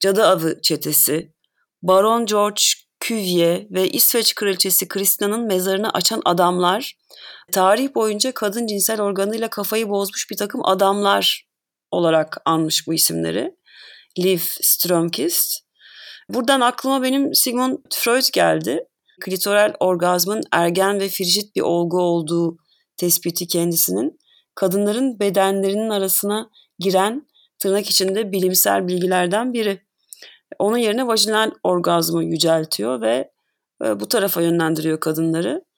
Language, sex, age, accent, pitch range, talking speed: Turkish, female, 30-49, native, 185-235 Hz, 105 wpm